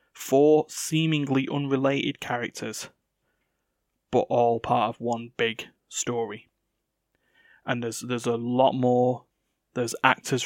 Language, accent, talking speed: English, British, 110 wpm